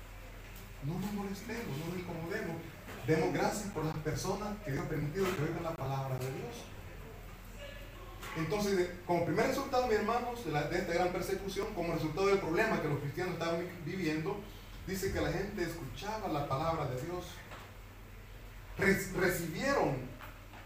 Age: 30-49